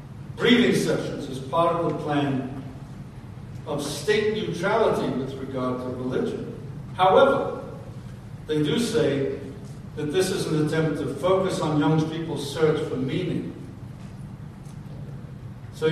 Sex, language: male, English